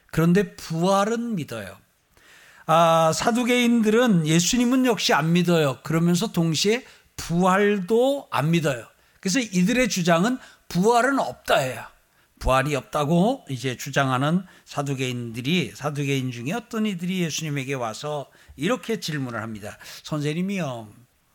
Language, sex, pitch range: Korean, male, 140-200 Hz